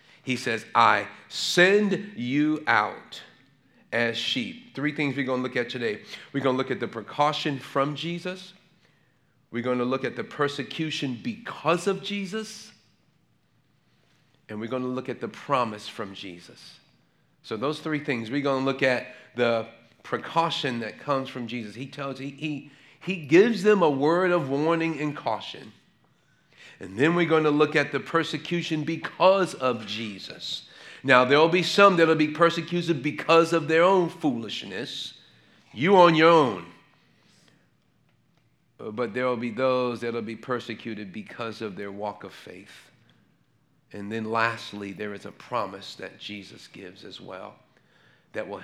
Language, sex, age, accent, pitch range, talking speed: English, male, 40-59, American, 120-165 Hz, 160 wpm